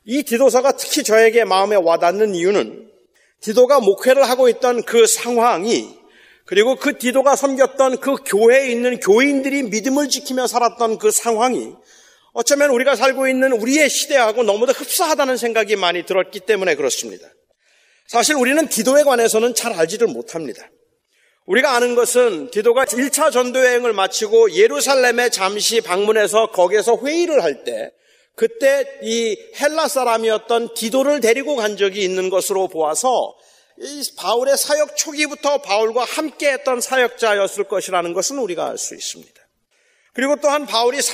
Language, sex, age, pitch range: Korean, male, 40-59, 225-290 Hz